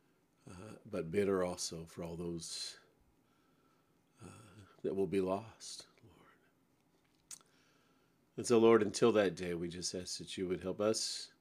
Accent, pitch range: American, 90-100 Hz